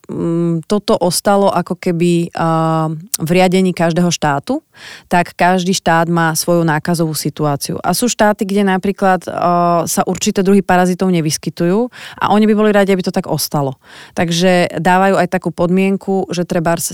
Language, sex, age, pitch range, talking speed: Slovak, female, 30-49, 160-180 Hz, 140 wpm